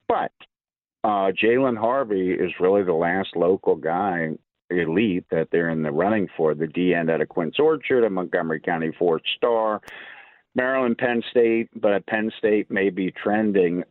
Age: 50-69